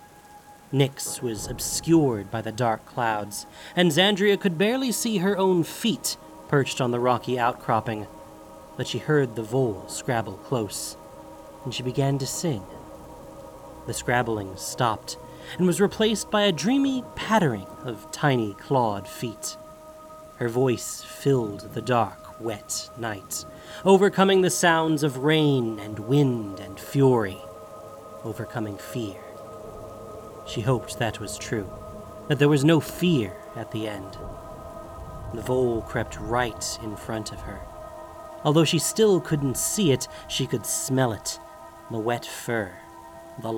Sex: male